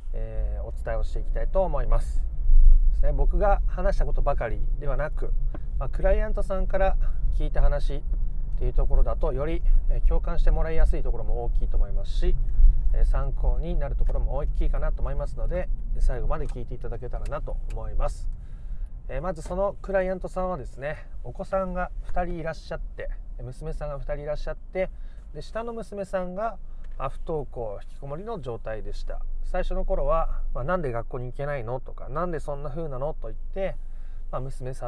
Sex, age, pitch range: male, 30-49, 115-170 Hz